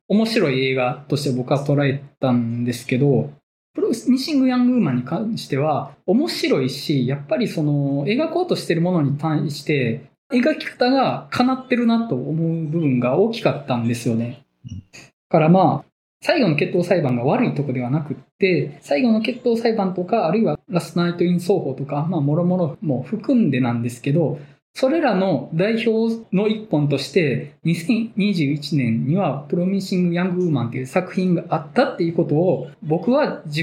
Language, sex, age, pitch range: Japanese, male, 20-39, 130-190 Hz